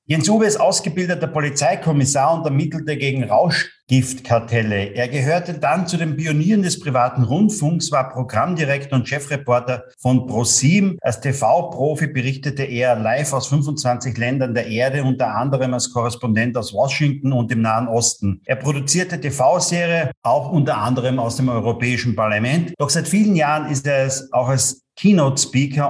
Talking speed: 150 wpm